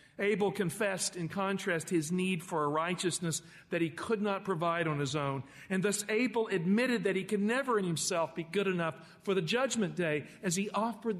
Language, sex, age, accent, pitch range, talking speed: English, male, 50-69, American, 155-200 Hz, 200 wpm